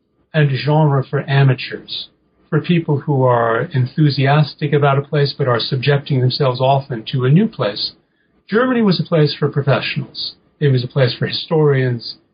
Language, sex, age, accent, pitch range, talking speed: English, male, 40-59, American, 130-155 Hz, 160 wpm